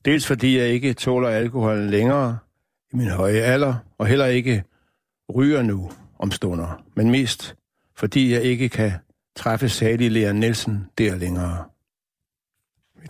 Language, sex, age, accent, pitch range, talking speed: Danish, male, 60-79, native, 105-130 Hz, 135 wpm